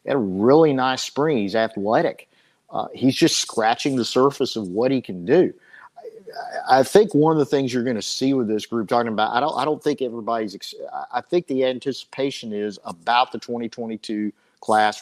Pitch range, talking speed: 105-125 Hz, 200 wpm